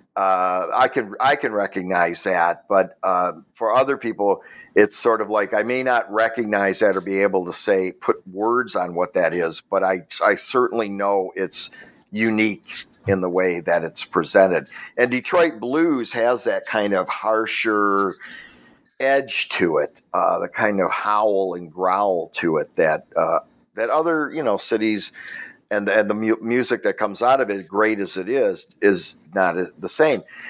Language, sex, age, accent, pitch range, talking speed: English, male, 50-69, American, 100-125 Hz, 180 wpm